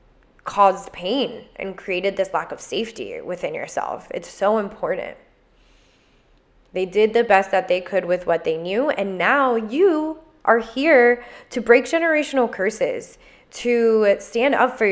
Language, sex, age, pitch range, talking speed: English, female, 10-29, 185-240 Hz, 150 wpm